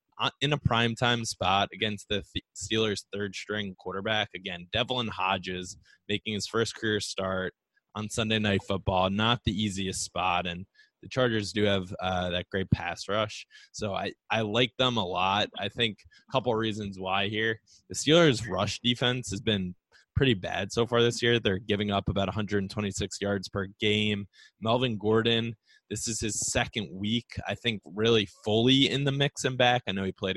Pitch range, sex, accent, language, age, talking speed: 95-115 Hz, male, American, English, 20-39, 180 wpm